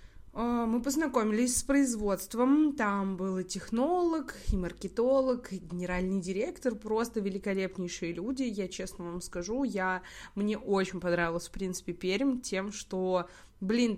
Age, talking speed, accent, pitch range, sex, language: 20-39, 130 wpm, native, 195-255 Hz, female, Russian